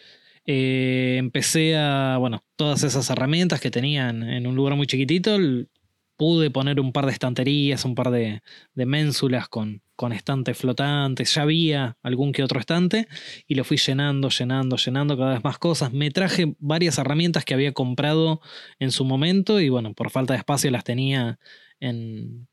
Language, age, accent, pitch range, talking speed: Spanish, 20-39, Argentinian, 130-155 Hz, 175 wpm